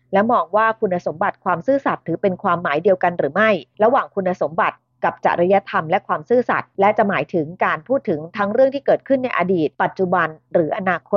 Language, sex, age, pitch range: Thai, female, 30-49, 180-235 Hz